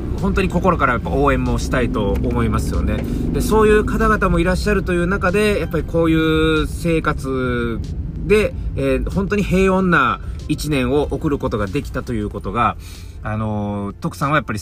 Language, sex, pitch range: Japanese, male, 100-165 Hz